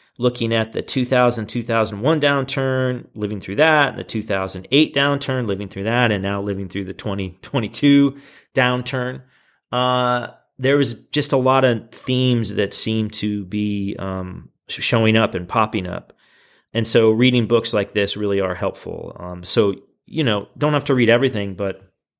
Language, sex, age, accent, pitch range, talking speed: English, male, 30-49, American, 100-130 Hz, 155 wpm